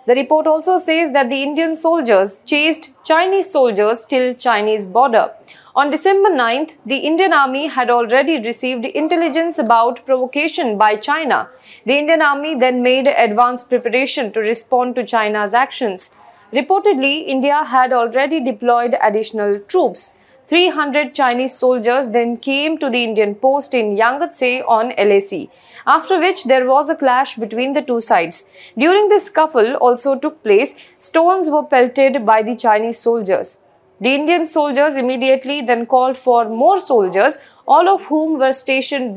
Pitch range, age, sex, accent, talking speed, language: 235-300 Hz, 20-39, female, Indian, 150 wpm, English